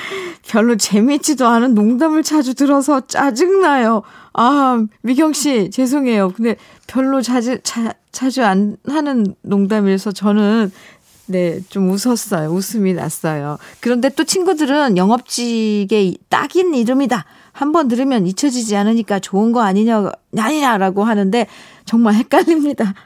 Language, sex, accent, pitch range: Korean, female, native, 190-260 Hz